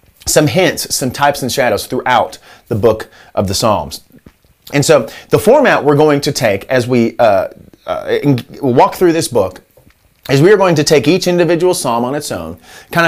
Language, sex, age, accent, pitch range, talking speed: English, male, 30-49, American, 120-160 Hz, 190 wpm